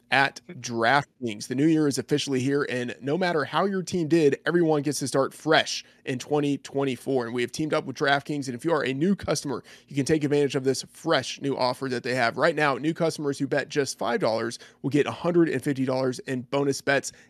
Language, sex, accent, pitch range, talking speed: English, male, American, 130-155 Hz, 215 wpm